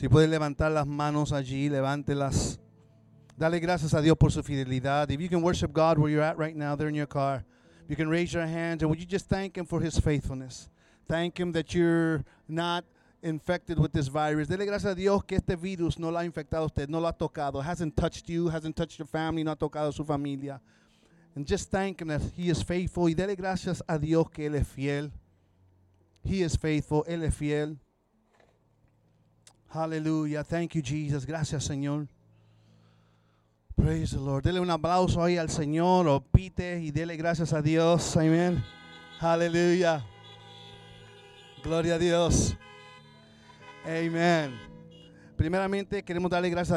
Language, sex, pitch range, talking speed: English, male, 140-170 Hz, 175 wpm